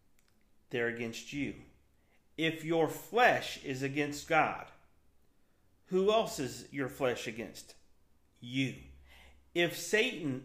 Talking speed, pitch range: 105 wpm, 125-165 Hz